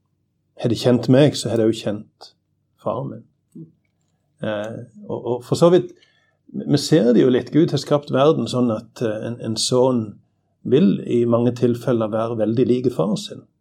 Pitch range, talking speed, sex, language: 115-130 Hz, 170 wpm, male, English